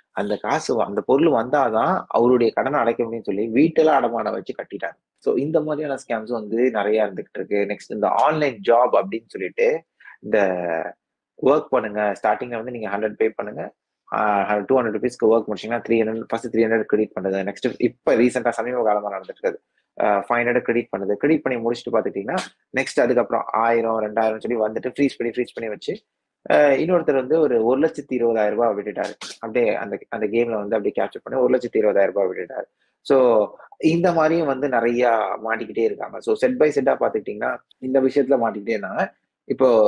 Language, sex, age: Tamil, male, 20-39